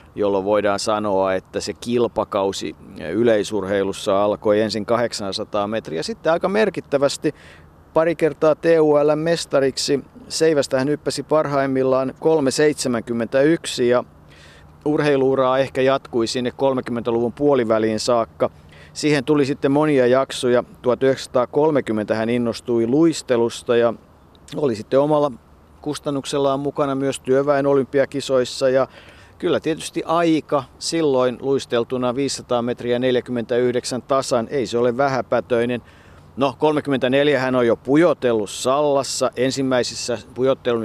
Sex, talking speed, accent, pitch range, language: male, 105 wpm, native, 115-140 Hz, Finnish